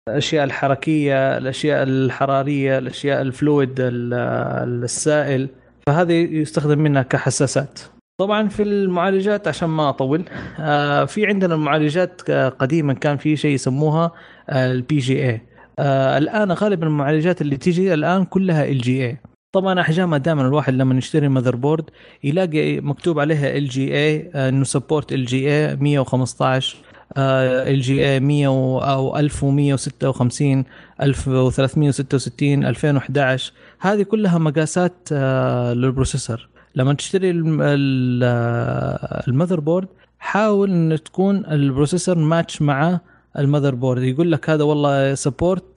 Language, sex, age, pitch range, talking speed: Arabic, male, 20-39, 135-165 Hz, 110 wpm